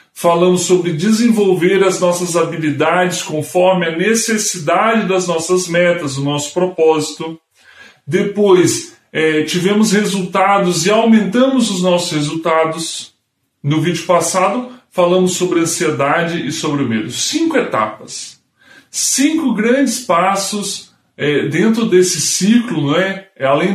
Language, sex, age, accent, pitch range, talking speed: Portuguese, female, 20-39, Brazilian, 160-195 Hz, 105 wpm